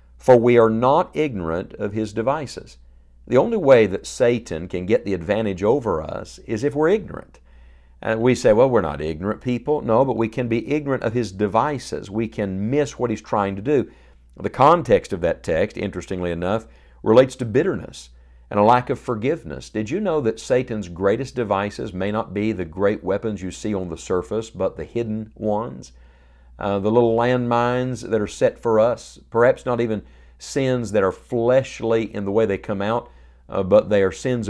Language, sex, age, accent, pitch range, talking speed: English, male, 50-69, American, 90-120 Hz, 195 wpm